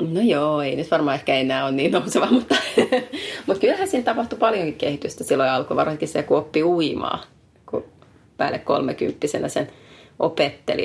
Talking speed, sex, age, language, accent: 160 wpm, female, 30-49, Finnish, native